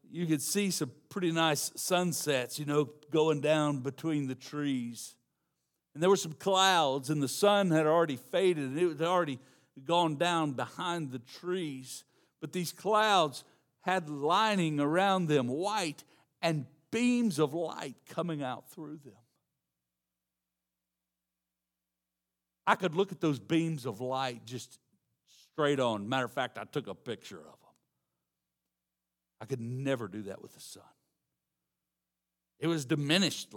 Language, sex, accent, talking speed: English, male, American, 145 wpm